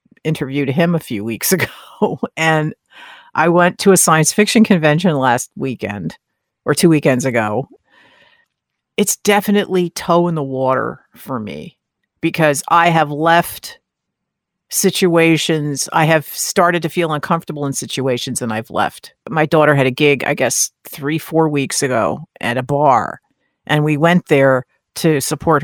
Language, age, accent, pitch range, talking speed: English, 50-69, American, 140-175 Hz, 150 wpm